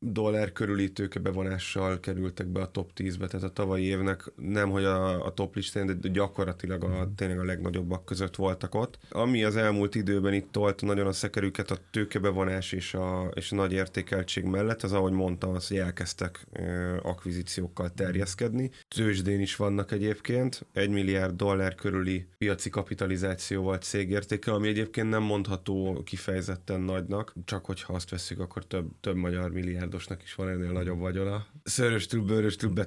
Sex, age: male, 30-49